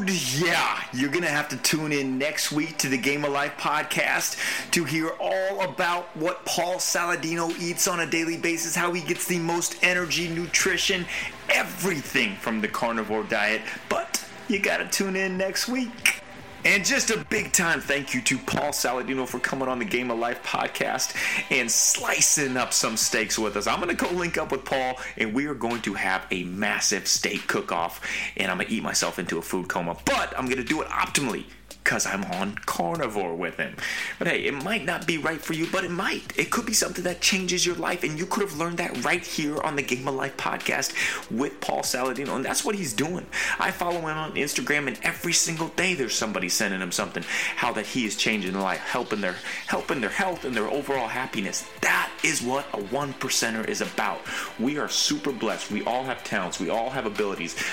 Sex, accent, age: male, American, 30-49